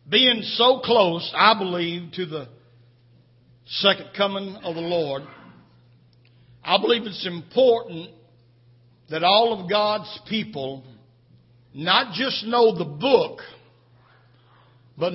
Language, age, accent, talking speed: English, 60-79, American, 105 wpm